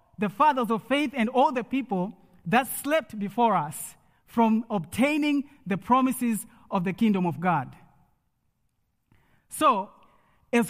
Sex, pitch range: male, 170-250 Hz